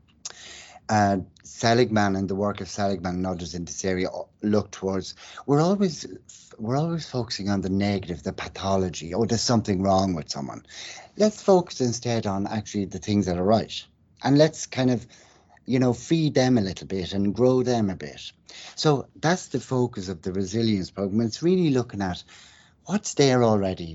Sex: male